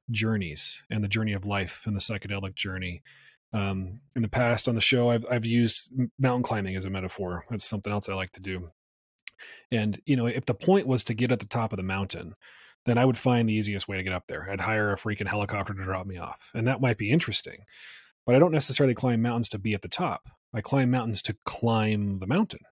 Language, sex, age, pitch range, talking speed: English, male, 30-49, 100-120 Hz, 235 wpm